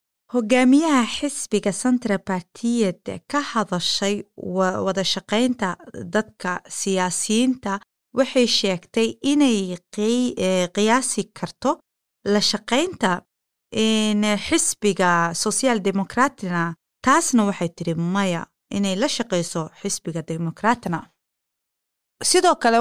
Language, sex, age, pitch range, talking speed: Dutch, female, 30-49, 195-260 Hz, 80 wpm